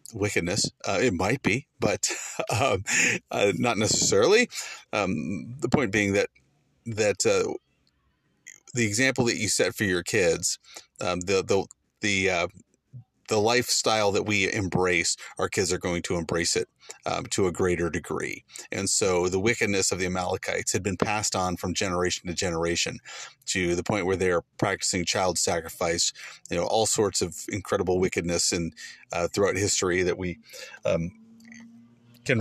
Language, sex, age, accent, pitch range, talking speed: English, male, 30-49, American, 90-120 Hz, 160 wpm